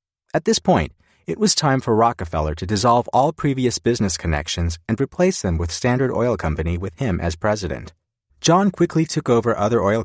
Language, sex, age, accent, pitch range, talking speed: English, male, 40-59, American, 90-130 Hz, 185 wpm